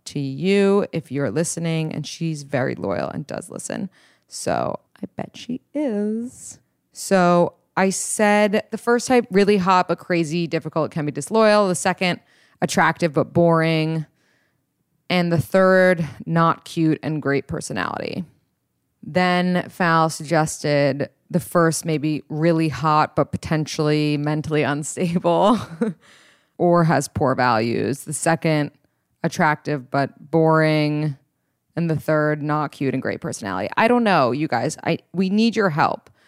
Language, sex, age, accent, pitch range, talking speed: English, female, 20-39, American, 150-180 Hz, 135 wpm